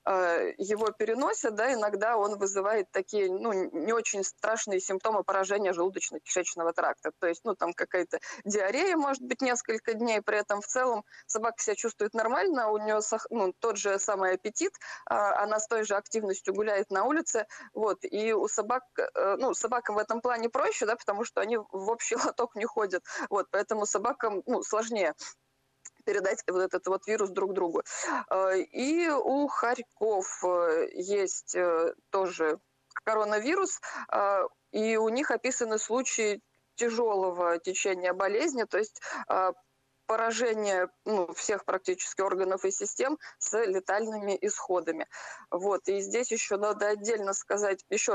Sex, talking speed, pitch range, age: female, 140 wpm, 195-235 Hz, 20-39